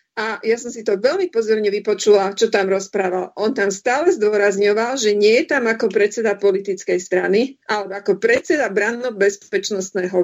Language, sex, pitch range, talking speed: Slovak, female, 195-230 Hz, 160 wpm